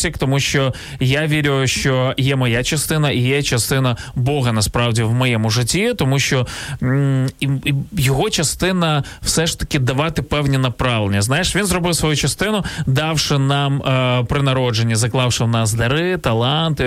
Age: 20-39